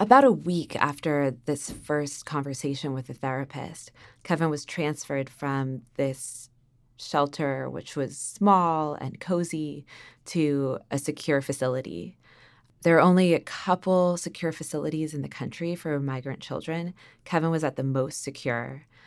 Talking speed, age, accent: 140 wpm, 20-39, American